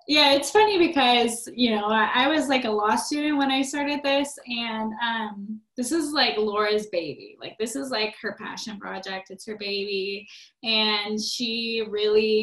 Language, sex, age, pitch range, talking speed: English, female, 10-29, 195-230 Hz, 180 wpm